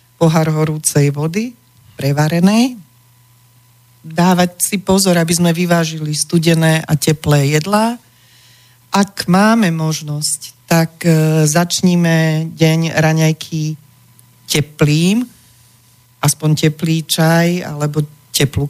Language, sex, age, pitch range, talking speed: Slovak, female, 40-59, 145-185 Hz, 85 wpm